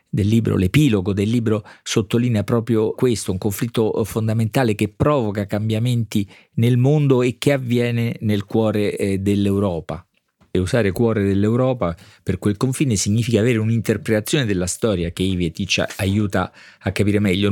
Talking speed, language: 140 wpm, Italian